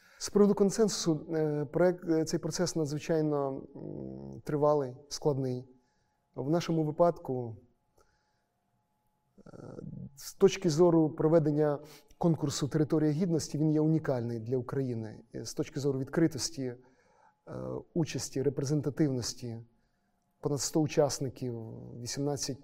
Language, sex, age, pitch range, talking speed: Ukrainian, male, 30-49, 135-160 Hz, 85 wpm